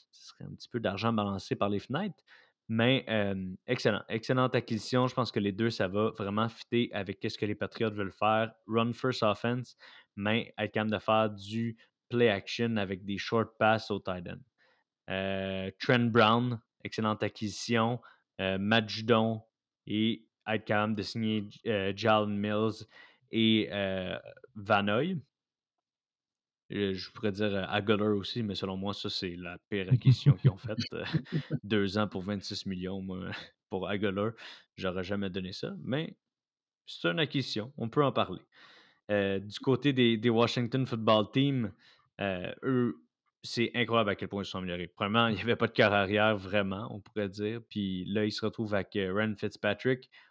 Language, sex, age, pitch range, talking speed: French, male, 20-39, 100-115 Hz, 170 wpm